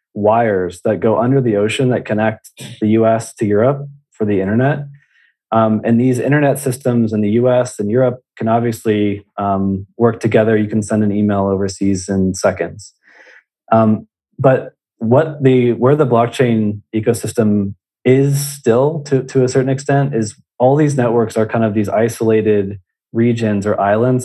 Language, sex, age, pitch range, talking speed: English, male, 20-39, 105-125 Hz, 160 wpm